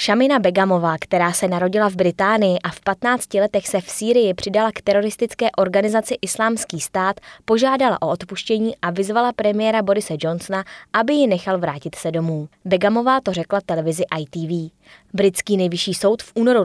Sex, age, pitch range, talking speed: female, 20-39, 175-210 Hz, 160 wpm